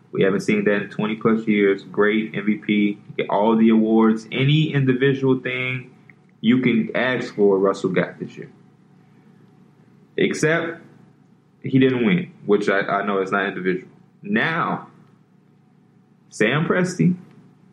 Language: English